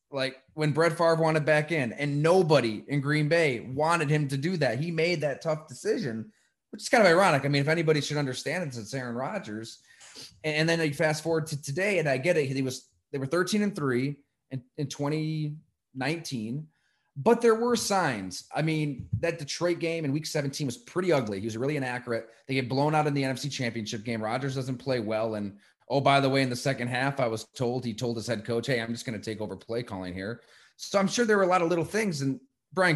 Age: 20-39